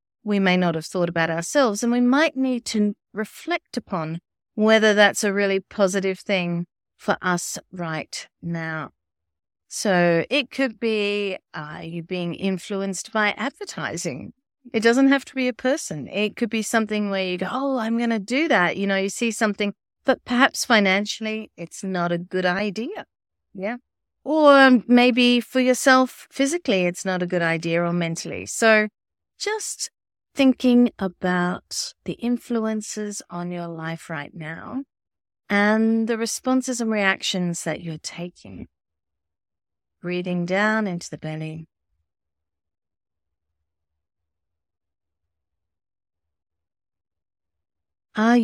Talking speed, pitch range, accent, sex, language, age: 130 wpm, 155-225 Hz, Australian, female, English, 30-49